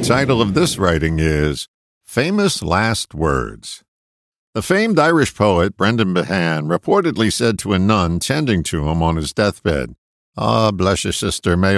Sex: male